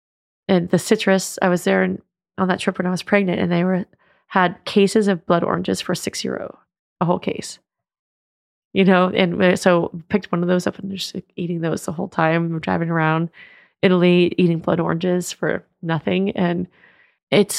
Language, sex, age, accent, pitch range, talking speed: English, female, 20-39, American, 175-190 Hz, 180 wpm